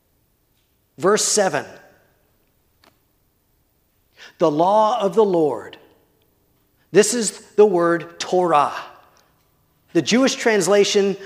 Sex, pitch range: male, 175-240 Hz